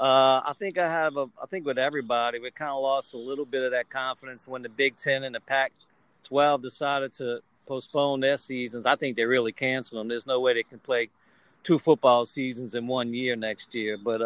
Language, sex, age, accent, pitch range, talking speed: English, male, 50-69, American, 125-150 Hz, 225 wpm